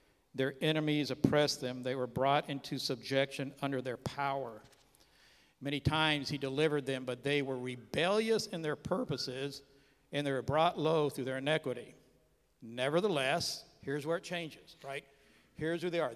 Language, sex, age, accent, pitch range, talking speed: English, male, 60-79, American, 130-155 Hz, 155 wpm